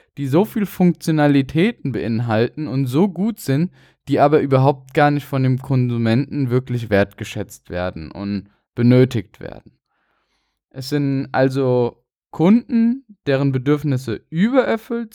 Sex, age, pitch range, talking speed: male, 10-29, 125-170 Hz, 120 wpm